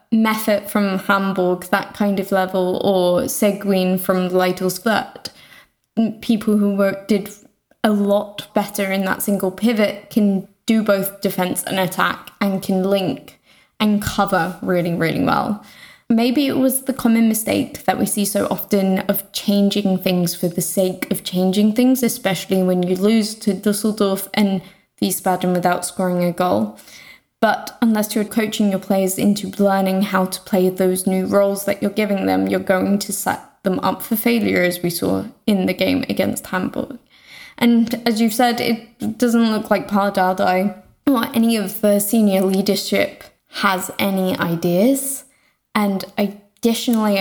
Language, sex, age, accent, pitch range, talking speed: English, female, 10-29, British, 190-225 Hz, 160 wpm